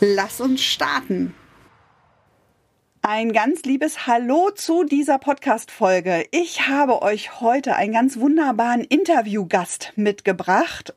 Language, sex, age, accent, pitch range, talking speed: German, female, 40-59, German, 185-265 Hz, 105 wpm